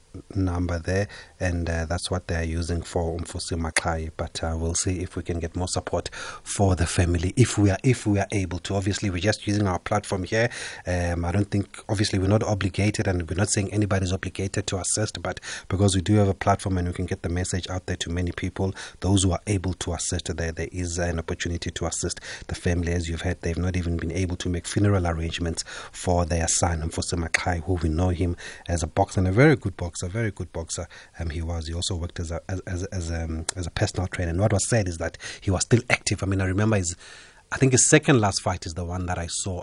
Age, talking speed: 30-49, 255 wpm